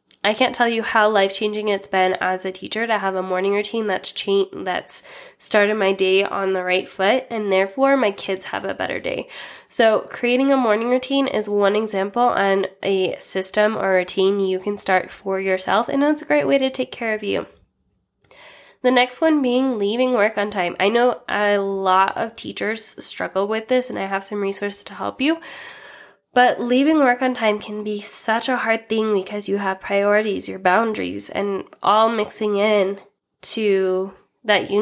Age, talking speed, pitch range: 10-29, 190 wpm, 195-240 Hz